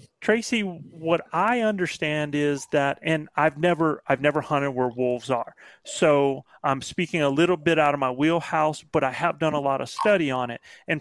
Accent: American